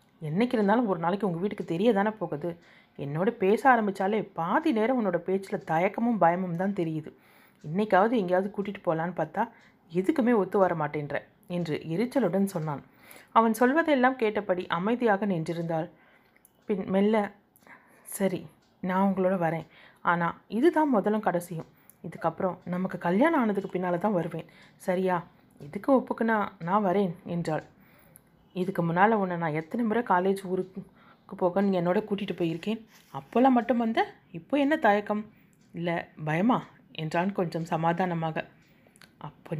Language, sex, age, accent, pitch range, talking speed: Tamil, female, 30-49, native, 170-215 Hz, 125 wpm